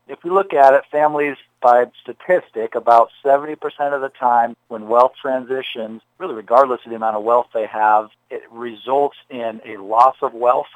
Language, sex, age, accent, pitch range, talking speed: English, male, 40-59, American, 120-140 Hz, 180 wpm